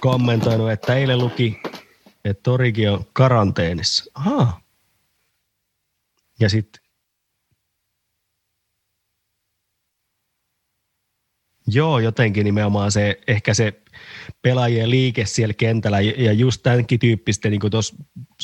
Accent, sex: native, male